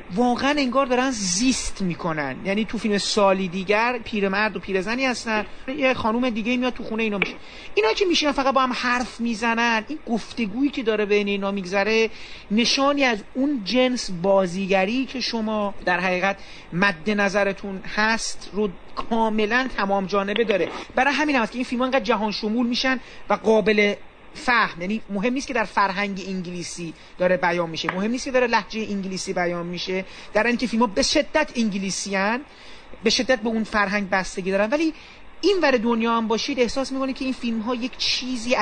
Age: 40-59